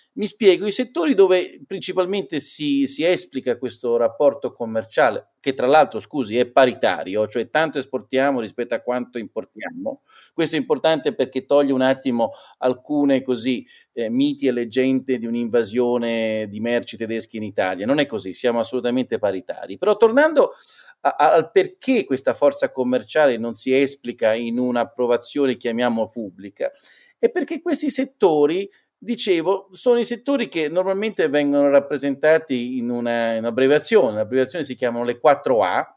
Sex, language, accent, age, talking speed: male, Italian, native, 40-59, 145 wpm